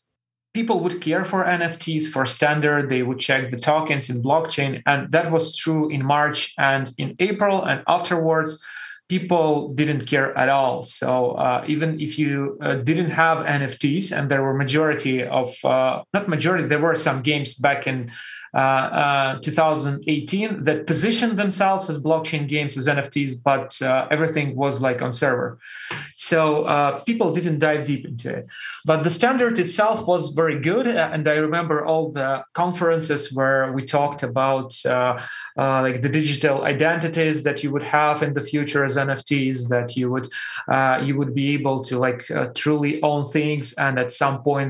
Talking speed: 175 wpm